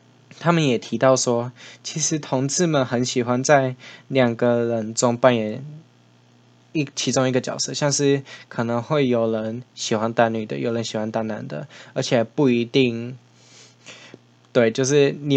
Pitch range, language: 115-135 Hz, Chinese